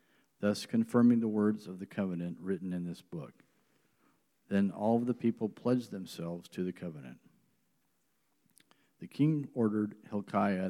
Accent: American